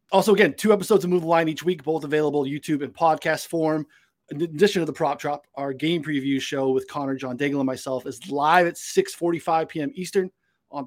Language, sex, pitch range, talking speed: English, male, 145-195 Hz, 210 wpm